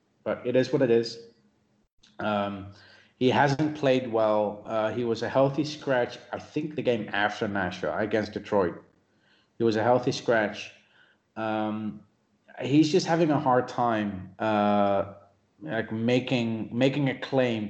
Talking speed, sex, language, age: 145 wpm, male, English, 30-49